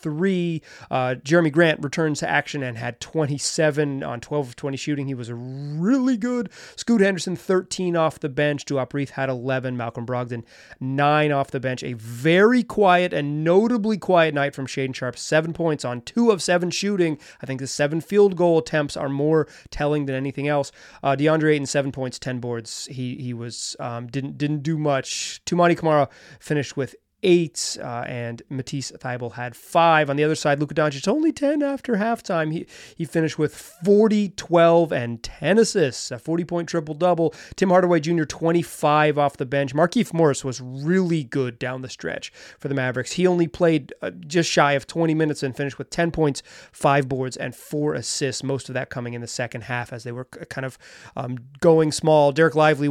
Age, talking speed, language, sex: 30-49, 195 wpm, English, male